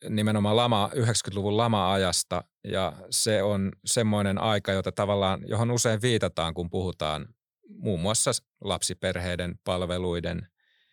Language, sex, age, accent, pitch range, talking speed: Finnish, male, 30-49, native, 90-115 Hz, 110 wpm